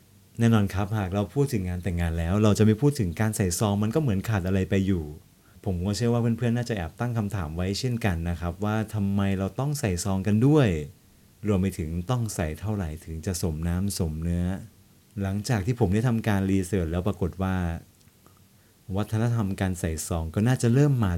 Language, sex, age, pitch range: Thai, male, 30-49, 95-110 Hz